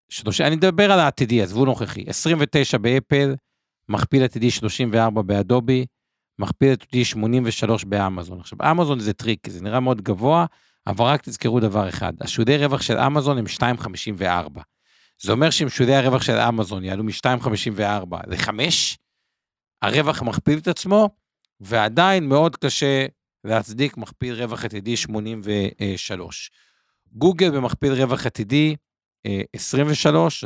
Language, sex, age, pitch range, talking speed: Hebrew, male, 50-69, 105-140 Hz, 125 wpm